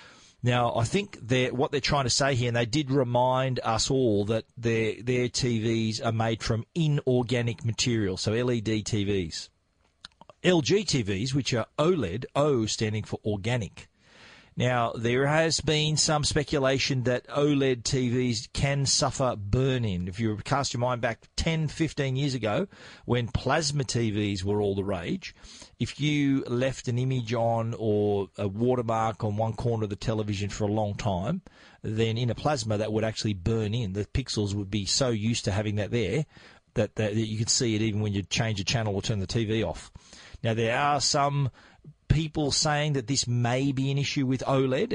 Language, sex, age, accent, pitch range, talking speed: English, male, 40-59, Australian, 110-140 Hz, 180 wpm